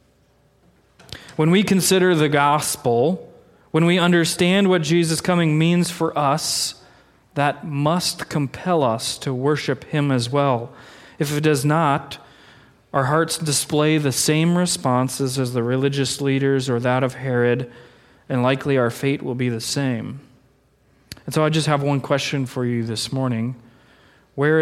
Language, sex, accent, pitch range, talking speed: English, male, American, 125-150 Hz, 150 wpm